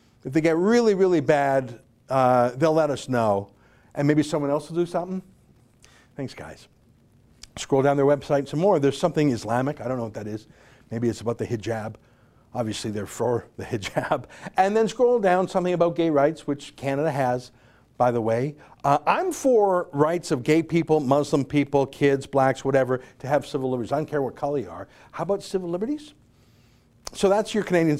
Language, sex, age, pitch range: English, male, 50-69, 125-180 Hz